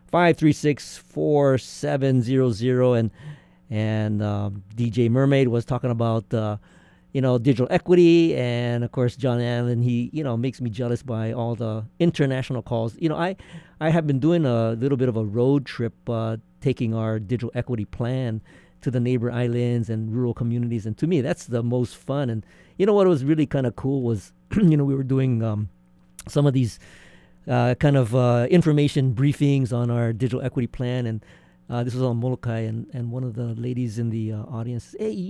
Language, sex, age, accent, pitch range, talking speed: English, male, 50-69, American, 120-150 Hz, 200 wpm